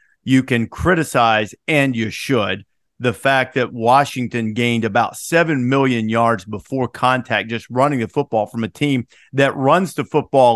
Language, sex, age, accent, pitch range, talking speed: English, male, 50-69, American, 125-170 Hz, 160 wpm